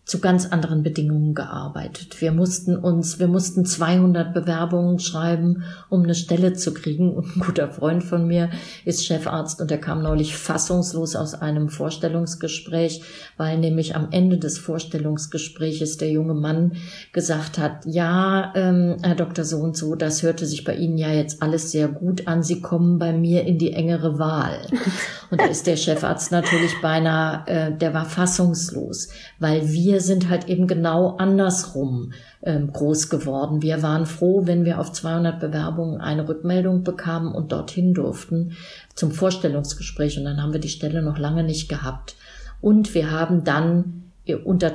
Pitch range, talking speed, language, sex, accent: 155-175 Hz, 165 wpm, German, female, German